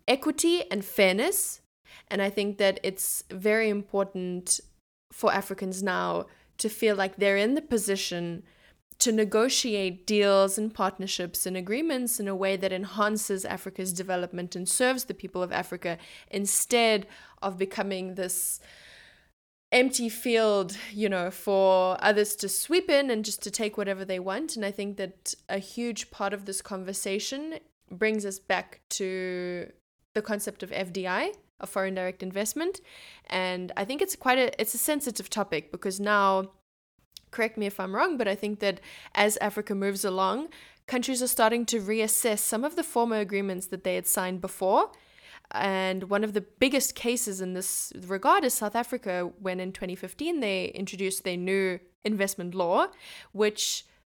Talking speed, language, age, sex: 160 wpm, English, 20-39, female